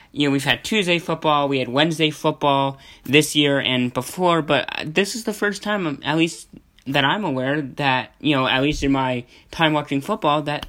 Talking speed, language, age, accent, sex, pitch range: 200 wpm, English, 10-29, American, male, 125-155 Hz